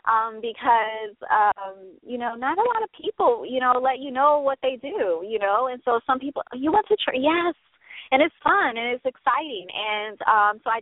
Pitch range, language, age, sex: 200-260 Hz, English, 20-39, female